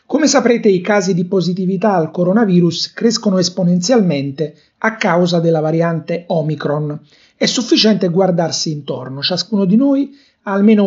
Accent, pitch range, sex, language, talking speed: native, 160-215 Hz, male, Italian, 130 wpm